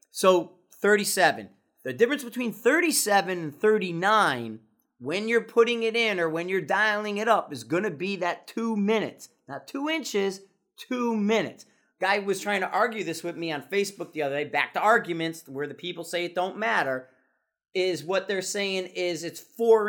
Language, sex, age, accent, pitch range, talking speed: English, male, 30-49, American, 155-220 Hz, 185 wpm